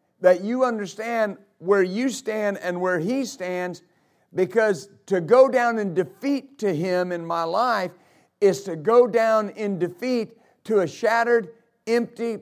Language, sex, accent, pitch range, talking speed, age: English, male, American, 180-225 Hz, 150 wpm, 50-69